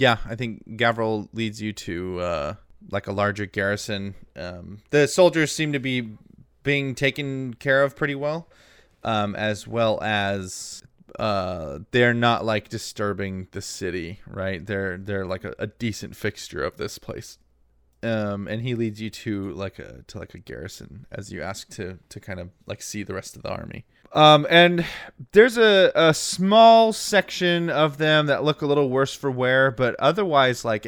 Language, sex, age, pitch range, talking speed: English, male, 20-39, 100-140 Hz, 175 wpm